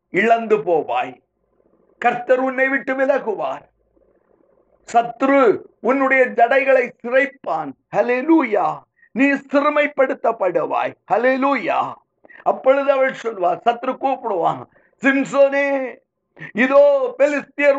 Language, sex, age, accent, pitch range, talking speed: Tamil, male, 50-69, native, 240-275 Hz, 55 wpm